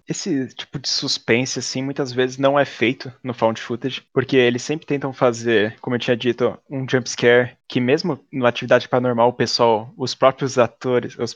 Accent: Brazilian